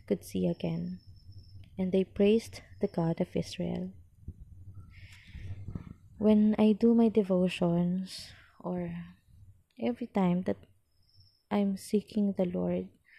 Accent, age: native, 20-39